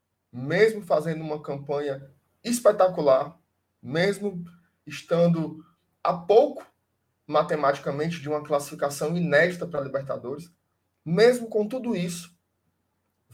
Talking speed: 100 wpm